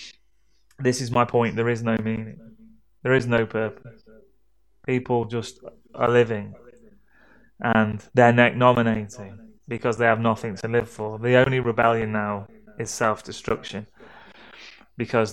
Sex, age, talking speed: male, 20-39, 130 wpm